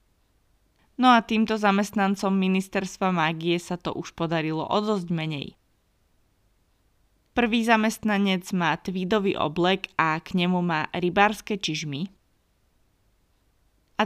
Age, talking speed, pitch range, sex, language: 20-39, 105 wpm, 150-195 Hz, female, Slovak